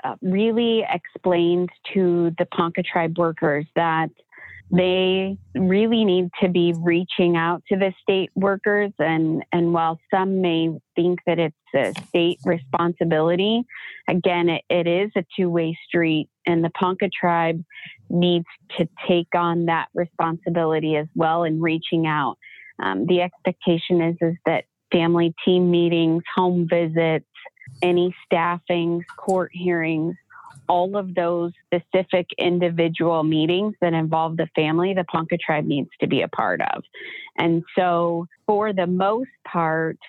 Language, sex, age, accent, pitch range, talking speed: English, female, 30-49, American, 165-180 Hz, 140 wpm